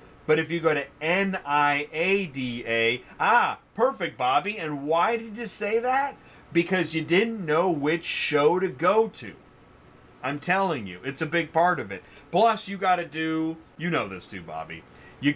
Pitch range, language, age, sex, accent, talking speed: 125-170 Hz, English, 40-59, male, American, 170 wpm